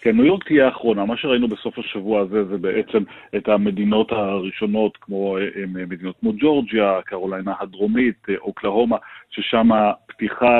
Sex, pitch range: male, 105-125 Hz